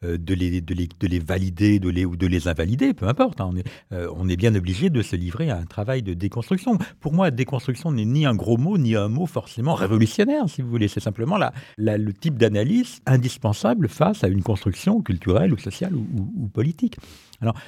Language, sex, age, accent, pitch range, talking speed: French, male, 60-79, French, 95-125 Hz, 225 wpm